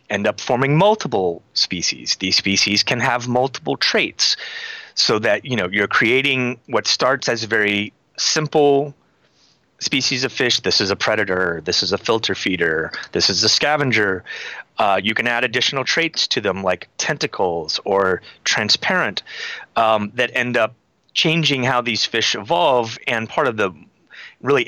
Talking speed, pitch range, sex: 165 wpm, 105-125 Hz, male